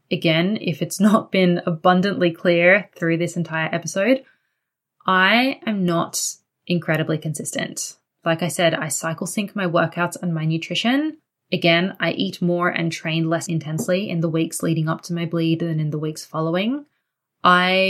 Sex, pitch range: female, 165-190 Hz